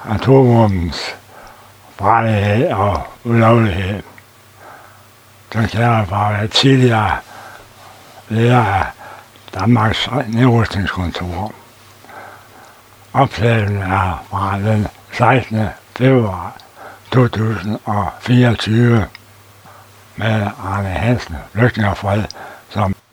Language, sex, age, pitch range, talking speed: Danish, male, 60-79, 100-115 Hz, 60 wpm